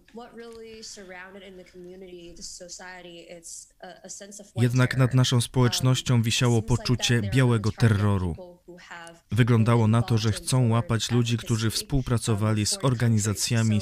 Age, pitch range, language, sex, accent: 20-39, 110-170 Hz, Polish, male, native